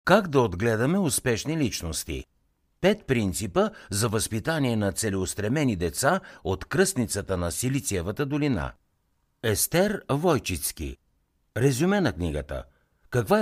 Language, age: Bulgarian, 60-79